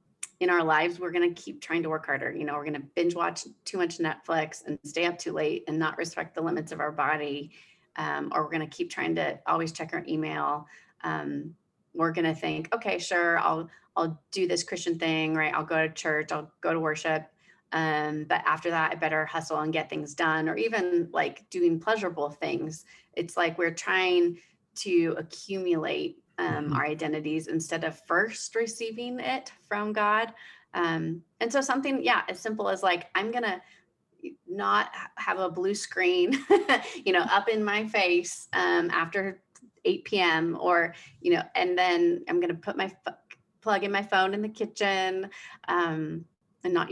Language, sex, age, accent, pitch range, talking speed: English, female, 30-49, American, 160-210 Hz, 190 wpm